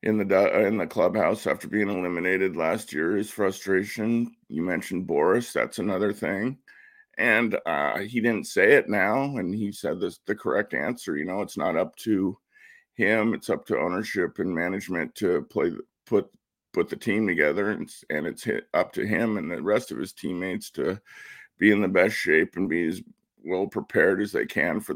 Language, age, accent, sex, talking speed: English, 50-69, American, male, 195 wpm